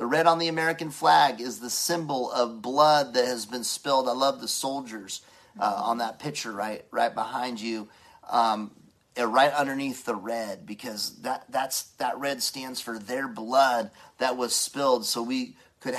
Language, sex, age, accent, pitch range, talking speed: English, male, 30-49, American, 125-170 Hz, 175 wpm